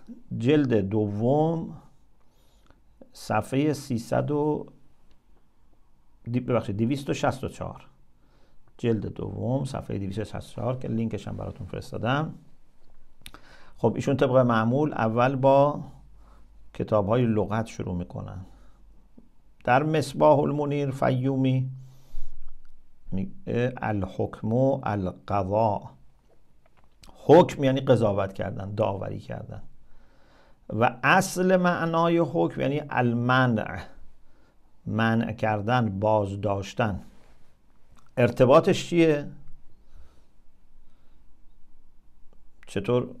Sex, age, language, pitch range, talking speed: male, 50-69, English, 105-135 Hz, 80 wpm